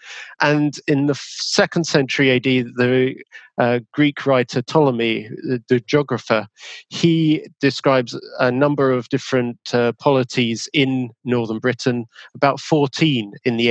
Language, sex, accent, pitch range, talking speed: English, male, British, 120-145 Hz, 125 wpm